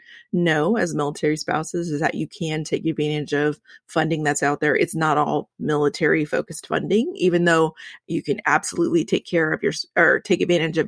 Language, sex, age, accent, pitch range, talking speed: English, female, 30-49, American, 155-215 Hz, 190 wpm